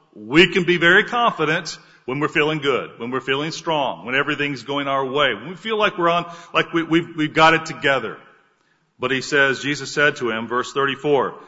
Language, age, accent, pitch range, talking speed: English, 40-59, American, 145-200 Hz, 210 wpm